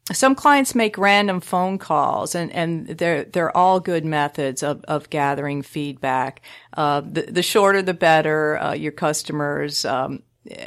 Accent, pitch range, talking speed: American, 145-180 Hz, 150 wpm